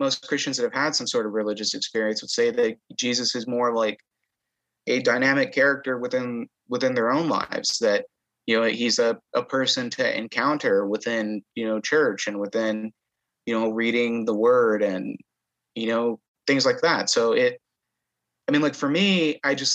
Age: 30-49